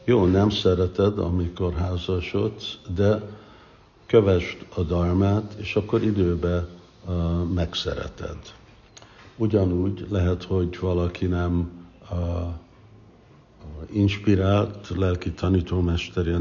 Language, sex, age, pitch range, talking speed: Hungarian, male, 60-79, 85-100 Hz, 85 wpm